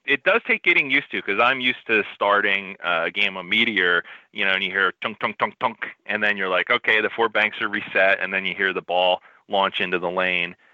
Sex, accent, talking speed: male, American, 245 wpm